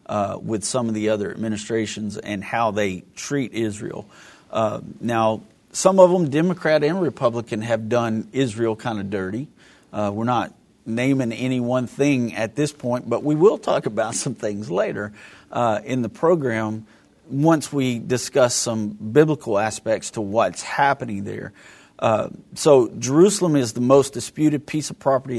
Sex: male